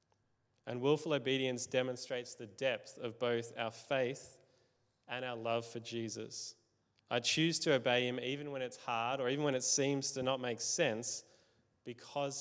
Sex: male